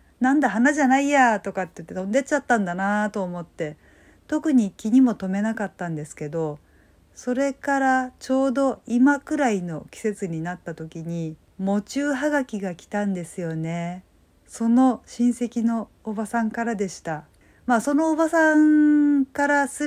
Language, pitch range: Japanese, 190-270 Hz